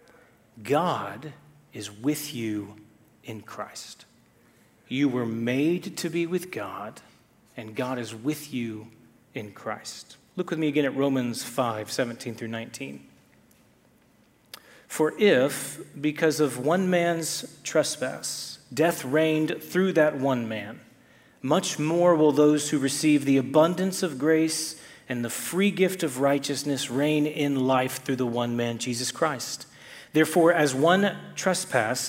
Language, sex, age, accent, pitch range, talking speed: English, male, 40-59, American, 130-160 Hz, 135 wpm